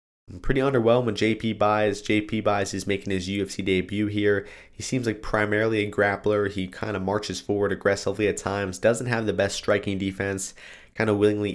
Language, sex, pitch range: English, male, 100-110 Hz